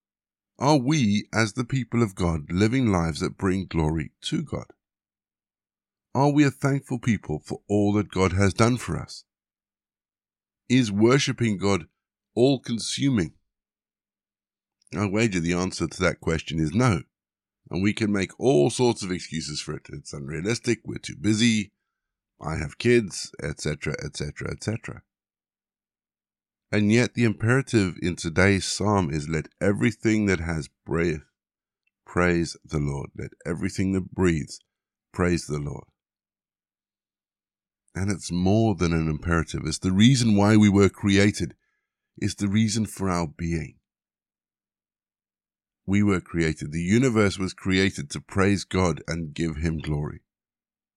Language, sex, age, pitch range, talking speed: English, male, 50-69, 85-110 Hz, 140 wpm